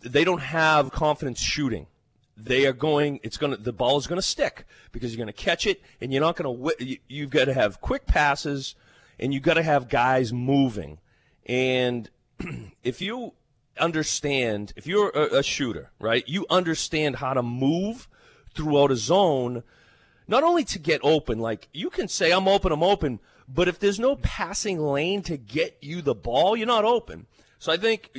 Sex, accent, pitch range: male, American, 125-165 Hz